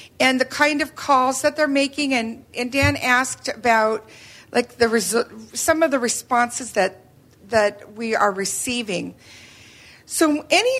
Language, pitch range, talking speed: English, 220-275 Hz, 150 wpm